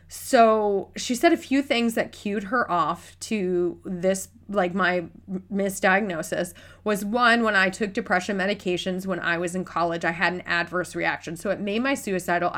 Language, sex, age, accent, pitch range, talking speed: English, female, 20-39, American, 170-230 Hz, 175 wpm